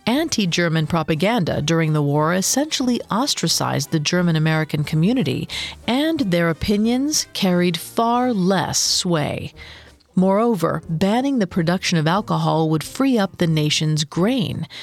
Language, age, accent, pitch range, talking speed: English, 40-59, American, 160-225 Hz, 115 wpm